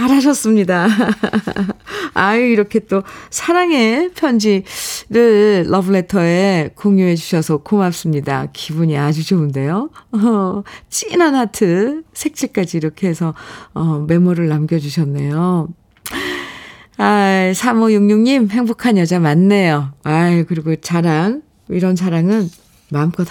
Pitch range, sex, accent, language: 165-225 Hz, female, native, Korean